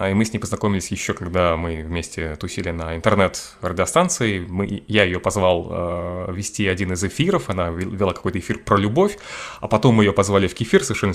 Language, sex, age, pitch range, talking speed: Russian, male, 20-39, 95-110 Hz, 190 wpm